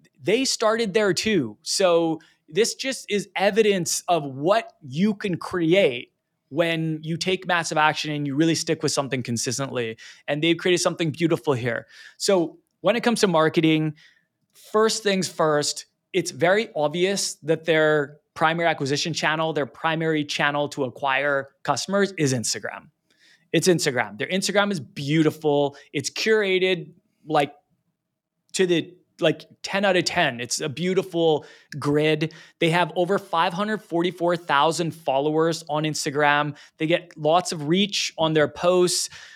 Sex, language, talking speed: male, English, 140 wpm